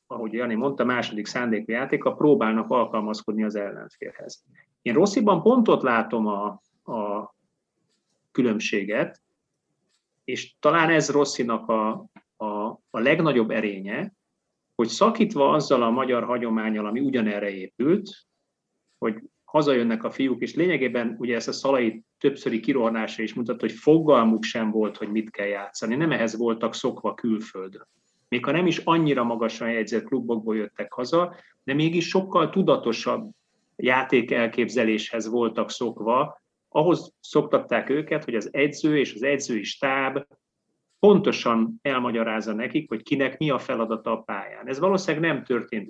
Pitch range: 110-140 Hz